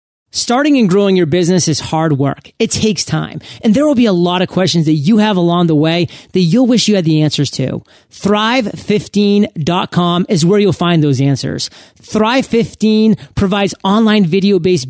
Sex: male